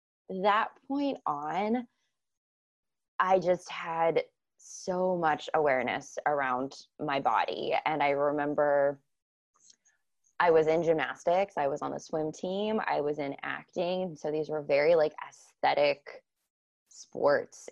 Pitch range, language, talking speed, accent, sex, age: 145-165 Hz, English, 120 wpm, American, female, 20-39